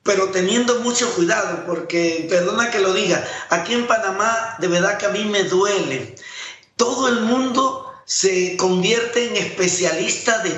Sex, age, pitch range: male, 50-69, 190-245 Hz